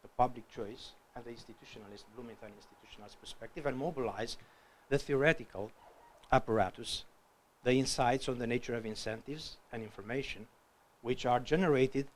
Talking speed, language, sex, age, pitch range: 125 wpm, English, male, 50-69, 120-175 Hz